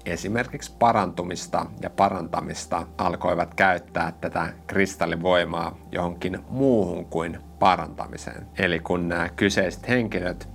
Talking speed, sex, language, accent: 95 wpm, male, Finnish, native